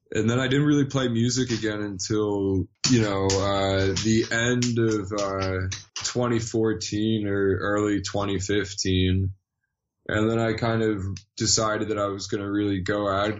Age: 20-39